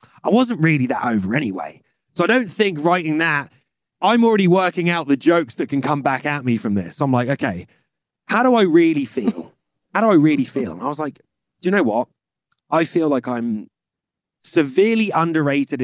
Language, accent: English, British